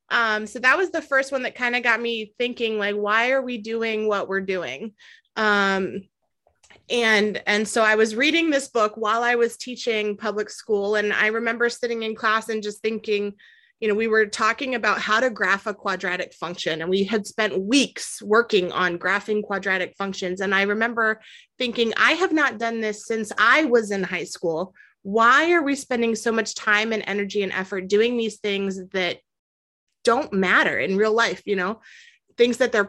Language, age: English, 30-49